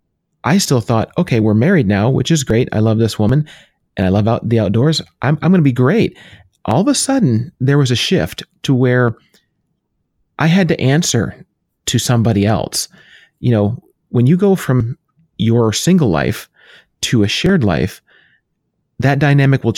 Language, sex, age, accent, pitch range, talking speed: English, male, 30-49, American, 110-135 Hz, 180 wpm